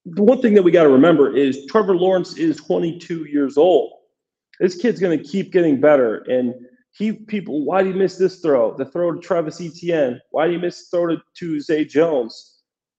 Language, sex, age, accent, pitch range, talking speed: English, male, 40-59, American, 145-185 Hz, 210 wpm